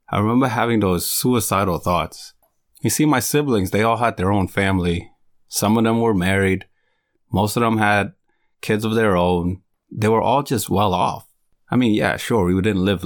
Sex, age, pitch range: male, 30-49, 90-110 Hz